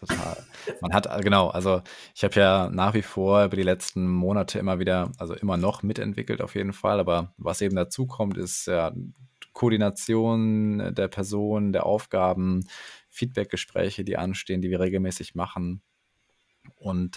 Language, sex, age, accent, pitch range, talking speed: German, male, 20-39, German, 90-105 Hz, 155 wpm